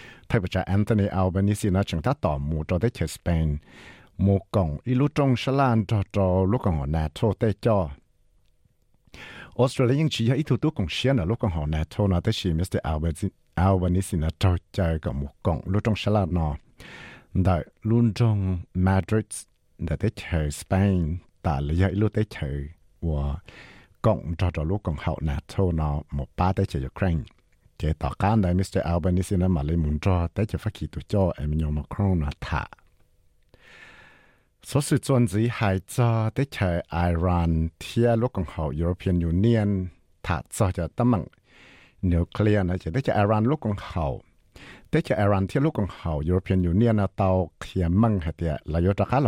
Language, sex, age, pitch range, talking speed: English, male, 60-79, 80-105 Hz, 90 wpm